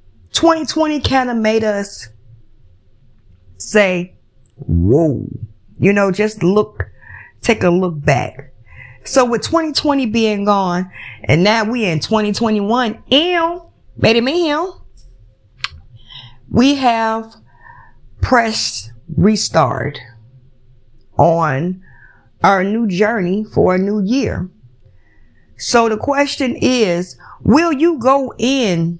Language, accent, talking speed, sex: English, American, 100 wpm, female